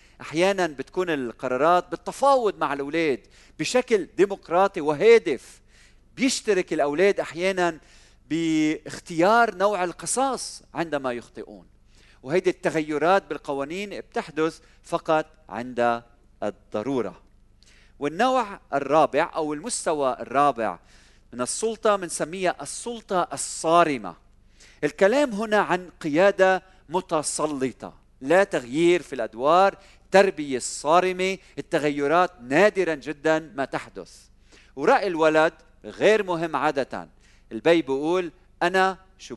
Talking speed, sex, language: 90 wpm, male, Arabic